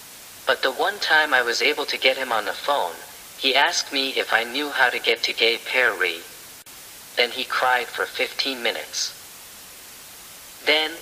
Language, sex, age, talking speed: English, male, 50-69, 175 wpm